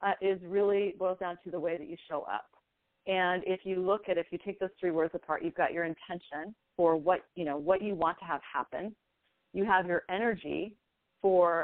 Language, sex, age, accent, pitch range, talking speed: English, female, 30-49, American, 165-195 Hz, 220 wpm